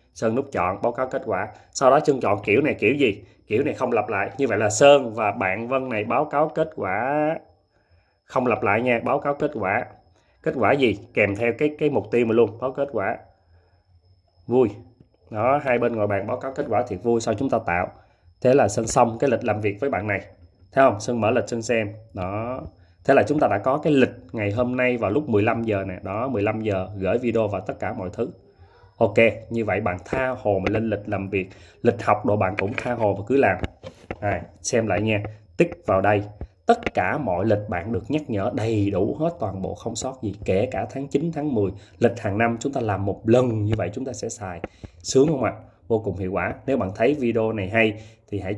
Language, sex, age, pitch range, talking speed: Vietnamese, male, 20-39, 100-120 Hz, 240 wpm